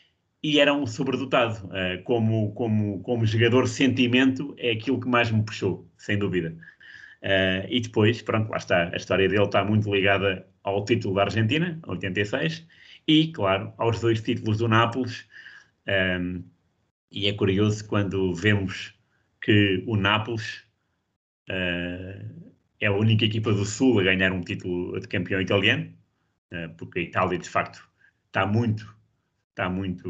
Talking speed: 140 wpm